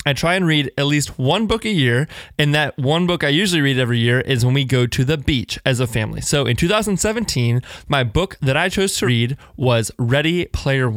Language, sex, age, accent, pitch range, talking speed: English, male, 20-39, American, 125-150 Hz, 230 wpm